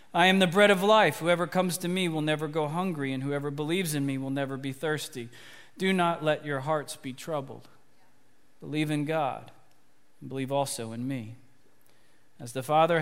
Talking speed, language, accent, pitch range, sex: 190 wpm, English, American, 145-185 Hz, male